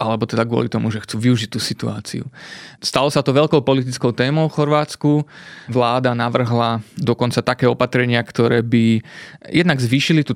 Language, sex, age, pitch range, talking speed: Slovak, male, 30-49, 120-135 Hz, 155 wpm